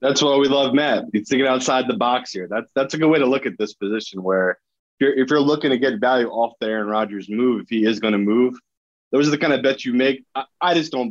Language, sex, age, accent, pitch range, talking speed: English, male, 20-39, American, 110-135 Hz, 285 wpm